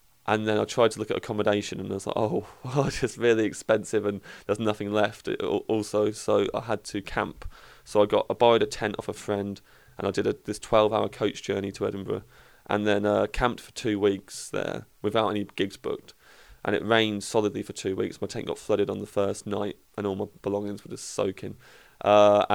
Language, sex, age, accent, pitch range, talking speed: English, male, 20-39, British, 100-110 Hz, 220 wpm